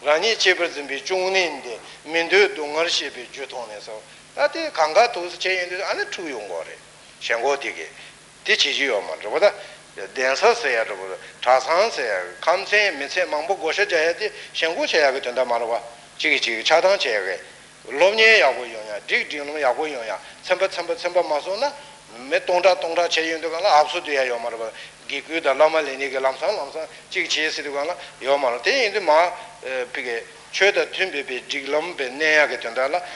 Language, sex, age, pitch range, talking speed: Italian, male, 60-79, 135-190 Hz, 70 wpm